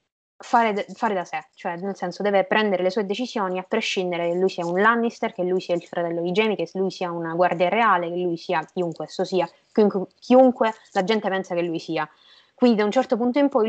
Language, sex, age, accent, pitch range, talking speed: Italian, female, 20-39, native, 175-215 Hz, 235 wpm